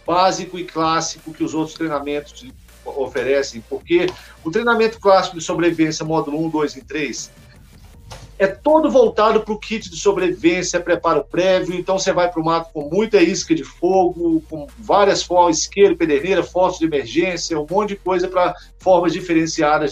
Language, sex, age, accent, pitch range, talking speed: Portuguese, male, 50-69, Brazilian, 160-205 Hz, 165 wpm